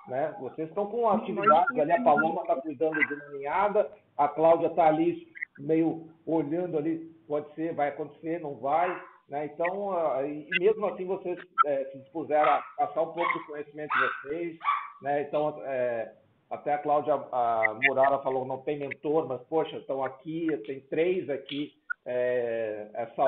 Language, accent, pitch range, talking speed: Portuguese, Brazilian, 135-170 Hz, 165 wpm